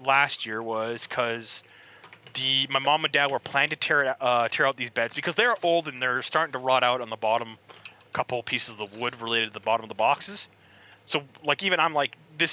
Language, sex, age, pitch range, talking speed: English, male, 20-39, 115-145 Hz, 240 wpm